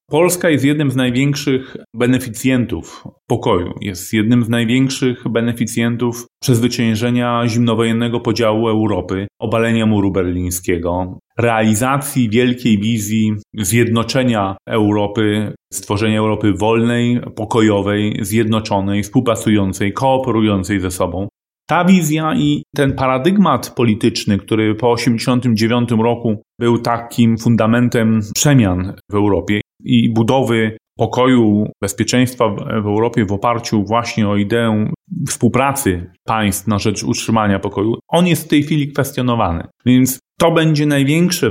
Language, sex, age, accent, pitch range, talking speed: Polish, male, 30-49, native, 105-130 Hz, 110 wpm